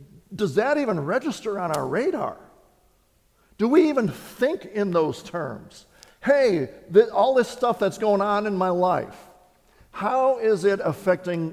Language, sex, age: English, male, 50-69